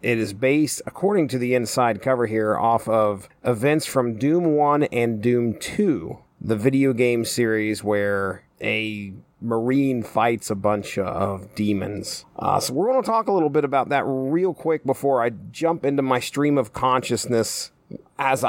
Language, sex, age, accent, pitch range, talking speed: English, male, 30-49, American, 110-140 Hz, 170 wpm